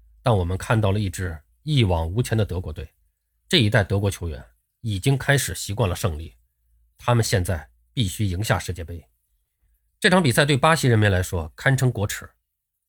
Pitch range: 85-120 Hz